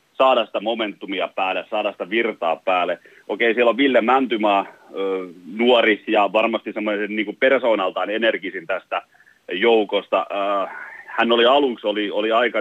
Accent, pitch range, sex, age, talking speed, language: native, 105-120 Hz, male, 40-59, 145 wpm, Finnish